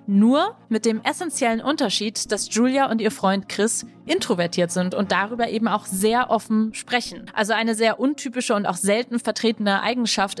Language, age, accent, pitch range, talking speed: German, 30-49, German, 205-250 Hz, 165 wpm